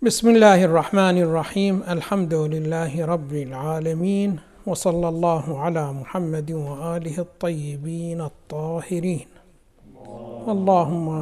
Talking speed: 85 wpm